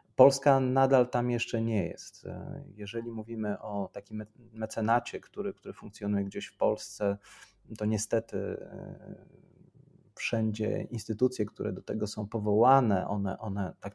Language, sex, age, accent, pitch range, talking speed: Polish, male, 30-49, native, 105-125 Hz, 125 wpm